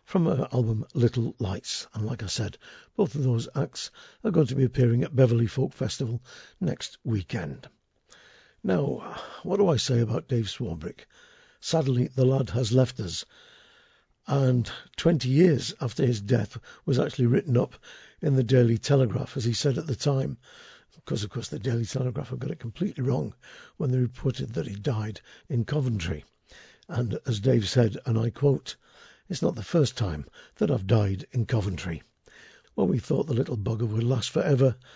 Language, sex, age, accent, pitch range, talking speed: English, male, 60-79, British, 115-140 Hz, 175 wpm